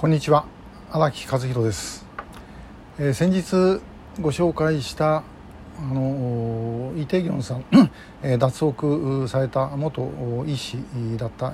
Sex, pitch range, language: male, 125-155 Hz, Japanese